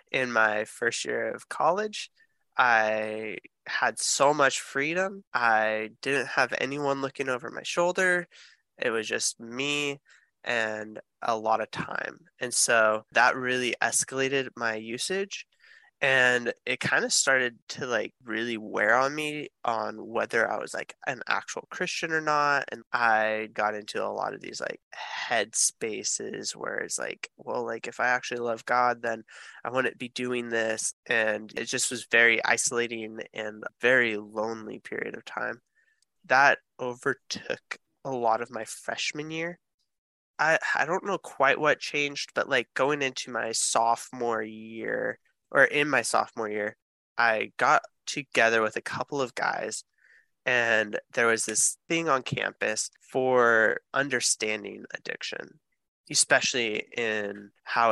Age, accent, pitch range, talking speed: 20-39, American, 110-135 Hz, 150 wpm